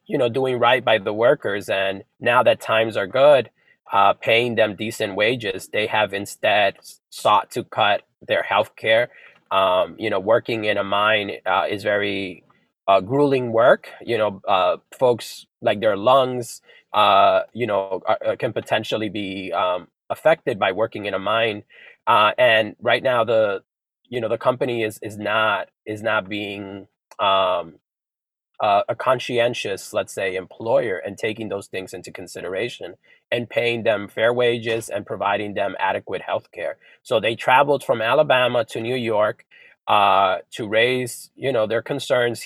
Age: 20-39